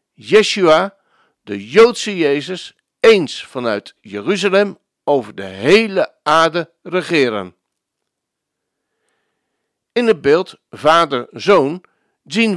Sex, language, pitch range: male, Dutch, 155-225 Hz